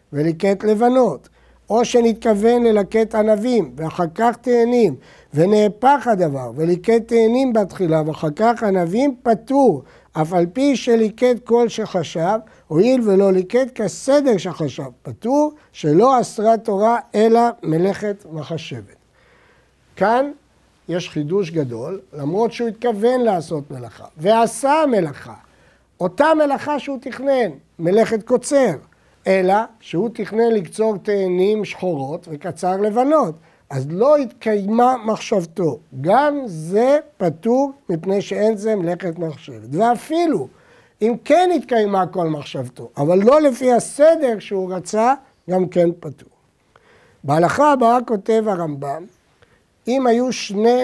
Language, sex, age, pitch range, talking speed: Hebrew, male, 60-79, 175-240 Hz, 110 wpm